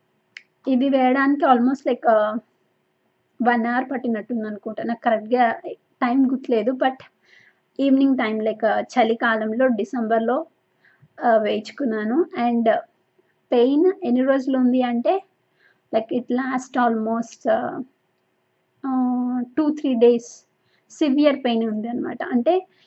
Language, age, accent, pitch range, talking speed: Telugu, 20-39, native, 230-270 Hz, 95 wpm